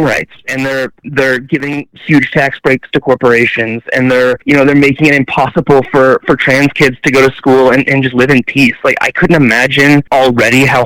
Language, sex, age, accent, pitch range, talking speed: English, male, 20-39, American, 120-140 Hz, 210 wpm